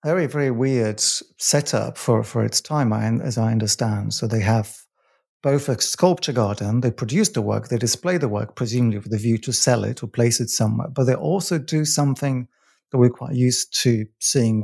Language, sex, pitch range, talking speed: English, male, 115-150 Hz, 200 wpm